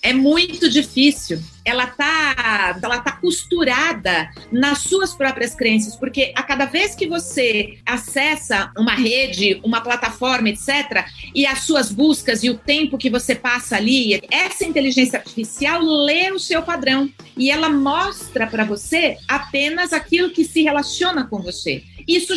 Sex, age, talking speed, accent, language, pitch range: female, 40-59, 150 wpm, Brazilian, Portuguese, 235-305 Hz